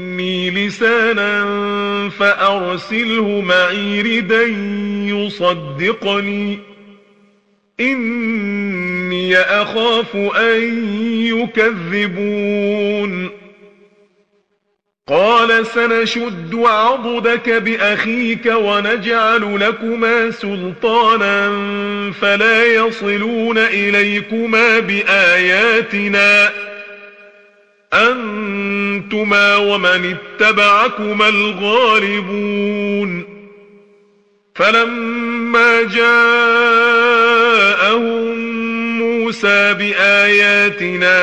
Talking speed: 40 wpm